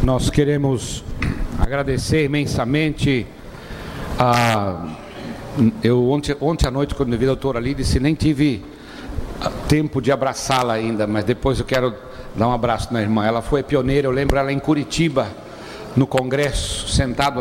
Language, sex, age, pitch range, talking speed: Portuguese, male, 60-79, 115-140 Hz, 150 wpm